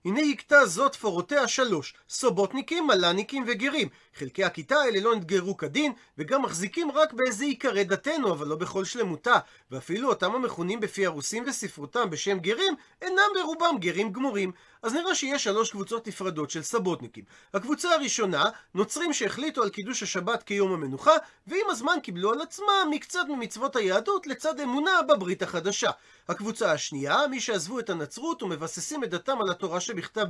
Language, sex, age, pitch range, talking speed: Hebrew, male, 40-59, 185-280 Hz, 130 wpm